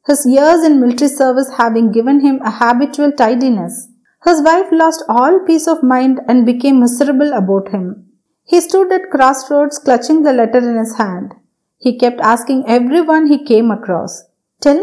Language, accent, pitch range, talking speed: Tamil, native, 230-315 Hz, 165 wpm